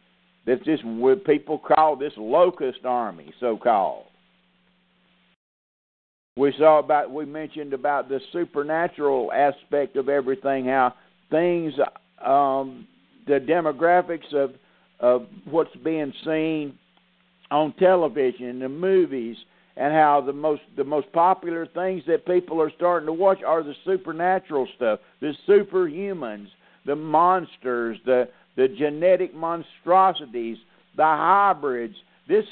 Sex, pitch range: male, 145-195 Hz